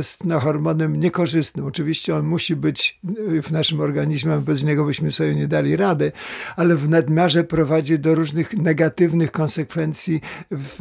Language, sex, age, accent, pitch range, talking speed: Polish, male, 50-69, native, 155-170 Hz, 145 wpm